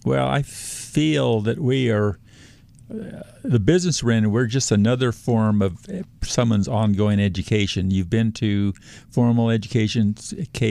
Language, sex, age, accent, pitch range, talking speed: English, male, 50-69, American, 100-120 Hz, 140 wpm